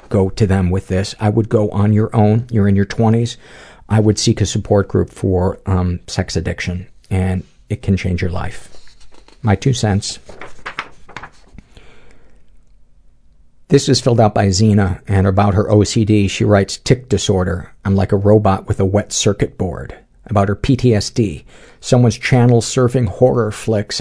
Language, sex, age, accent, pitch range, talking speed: English, male, 50-69, American, 95-115 Hz, 160 wpm